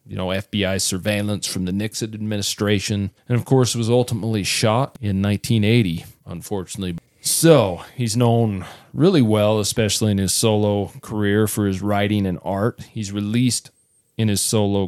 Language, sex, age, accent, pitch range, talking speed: English, male, 40-59, American, 100-125 Hz, 150 wpm